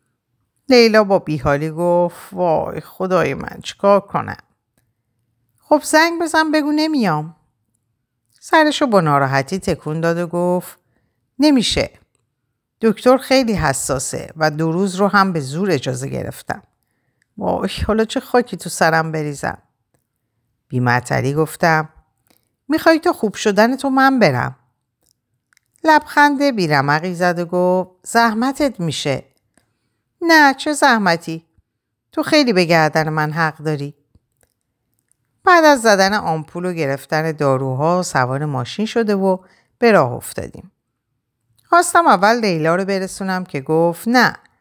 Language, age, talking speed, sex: Persian, 50-69, 120 wpm, female